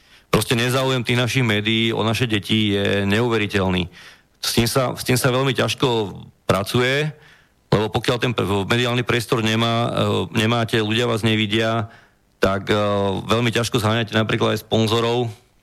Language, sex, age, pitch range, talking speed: Slovak, male, 40-59, 105-120 Hz, 140 wpm